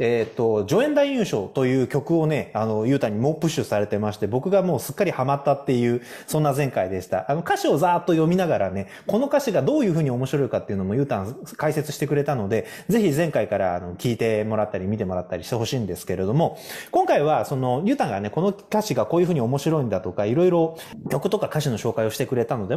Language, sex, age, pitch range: Japanese, male, 20-39, 120-200 Hz